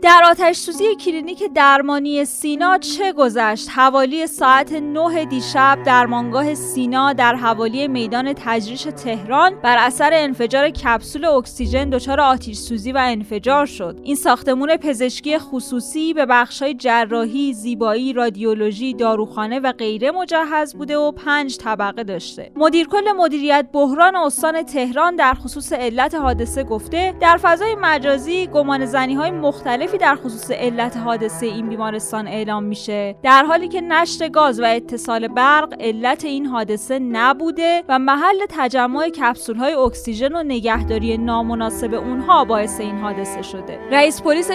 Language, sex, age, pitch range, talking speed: Persian, female, 20-39, 235-305 Hz, 135 wpm